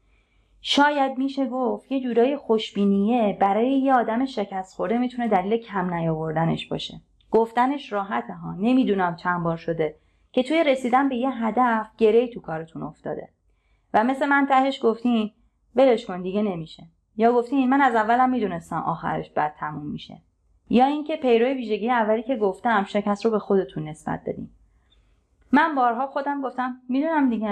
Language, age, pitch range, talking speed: Persian, 30-49, 190-255 Hz, 155 wpm